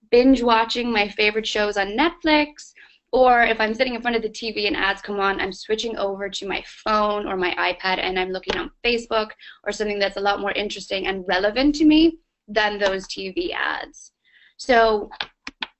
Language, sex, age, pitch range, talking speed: Finnish, female, 20-39, 200-240 Hz, 190 wpm